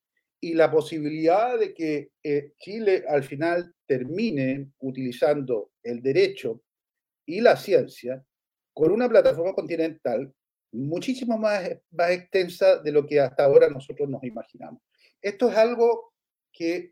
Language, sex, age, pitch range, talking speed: Spanish, male, 40-59, 145-230 Hz, 130 wpm